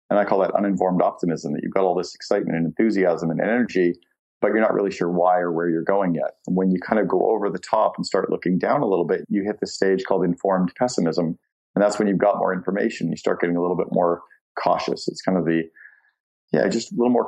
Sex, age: male, 40-59